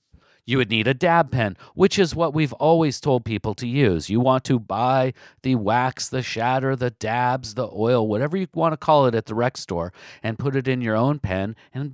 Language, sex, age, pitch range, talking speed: English, male, 50-69, 115-155 Hz, 225 wpm